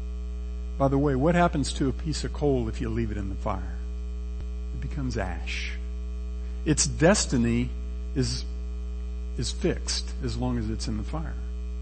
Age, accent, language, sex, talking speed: 50-69, American, English, male, 160 wpm